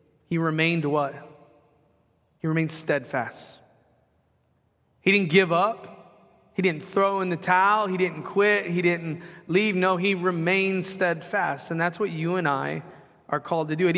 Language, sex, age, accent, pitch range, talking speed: English, male, 30-49, American, 150-190 Hz, 160 wpm